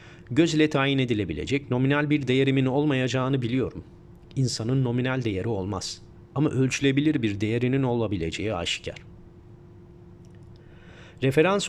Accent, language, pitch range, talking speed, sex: native, Turkish, 110-140 Hz, 105 wpm, male